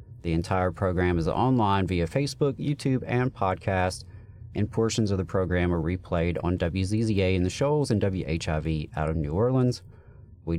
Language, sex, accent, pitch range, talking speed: English, male, American, 85-110 Hz, 165 wpm